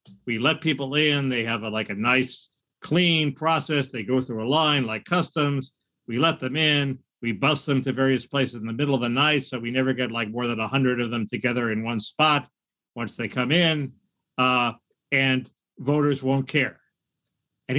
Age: 50-69